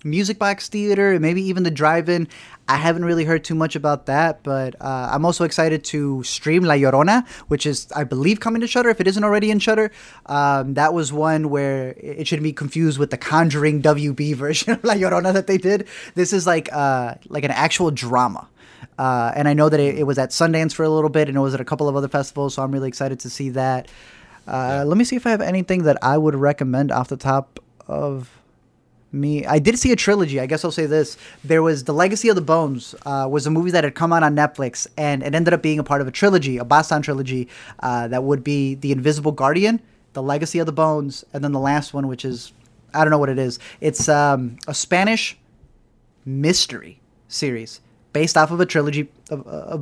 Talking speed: 230 wpm